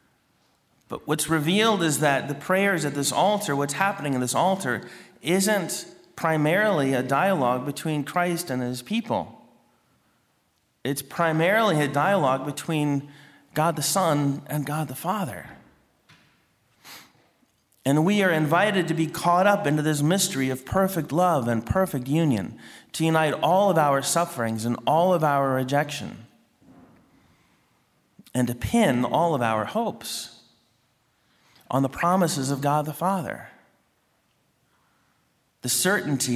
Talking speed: 130 wpm